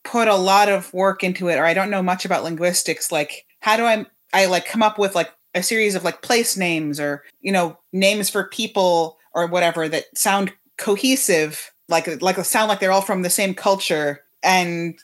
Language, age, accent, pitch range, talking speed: English, 30-49, American, 165-200 Hz, 210 wpm